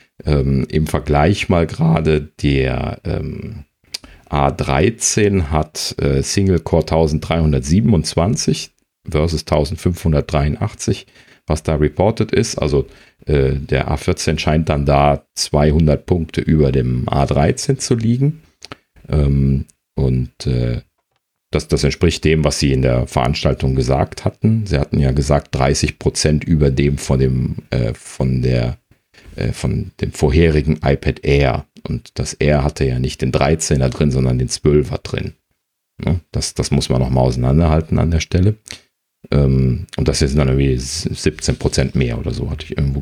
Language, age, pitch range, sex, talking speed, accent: German, 40-59, 70-85 Hz, male, 140 wpm, German